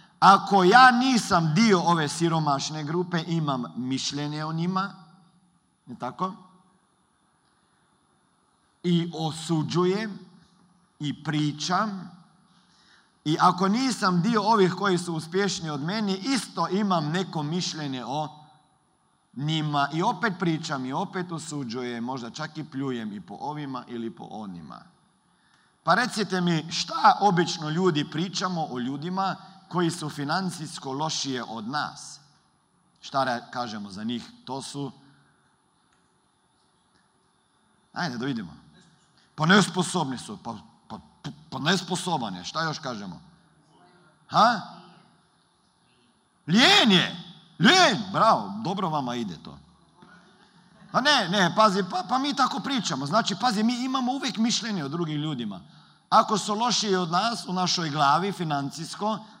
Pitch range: 155-195 Hz